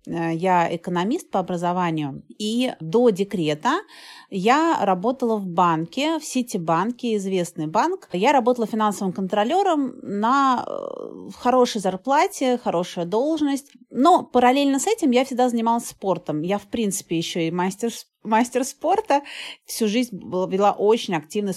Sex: female